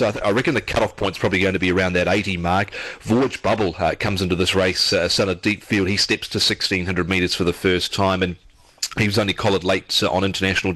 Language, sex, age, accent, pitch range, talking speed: English, male, 30-49, Australian, 95-110 Hz, 240 wpm